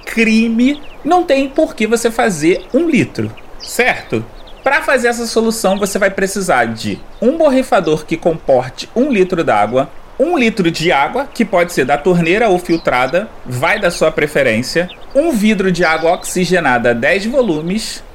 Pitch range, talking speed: 160-230 Hz, 155 wpm